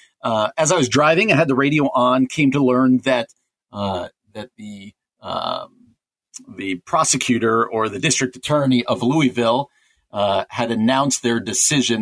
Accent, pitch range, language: American, 115-135 Hz, English